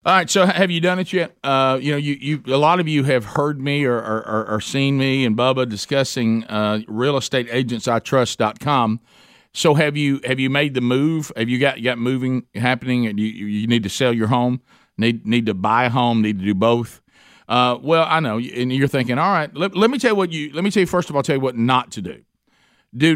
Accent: American